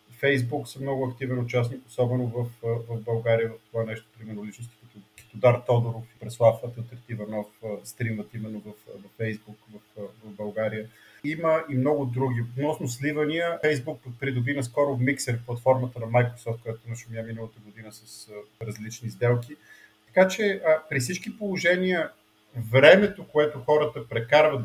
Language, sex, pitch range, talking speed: Bulgarian, male, 115-145 Hz, 150 wpm